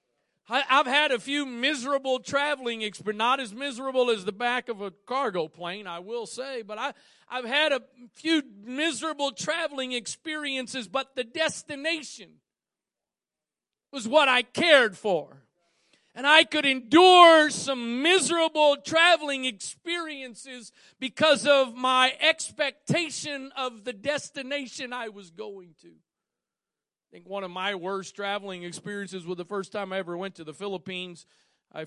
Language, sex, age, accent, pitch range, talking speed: English, male, 50-69, American, 165-265 Hz, 140 wpm